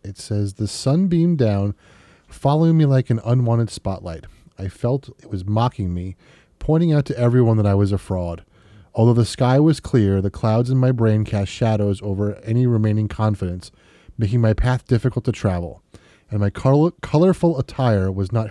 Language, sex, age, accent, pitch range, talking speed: English, male, 30-49, American, 100-130 Hz, 180 wpm